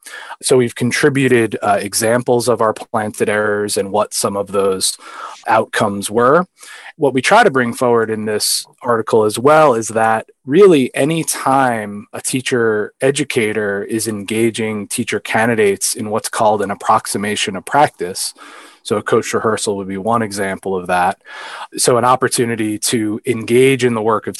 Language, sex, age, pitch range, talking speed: English, male, 20-39, 100-125 Hz, 155 wpm